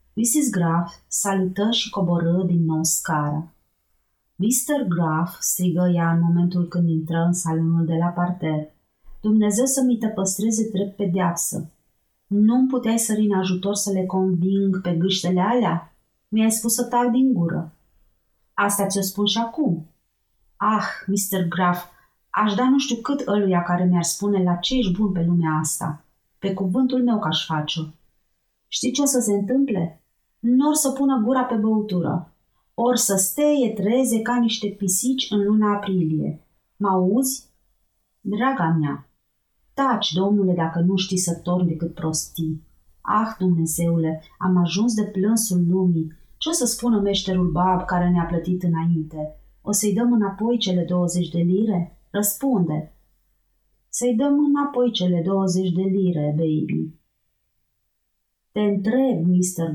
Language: Romanian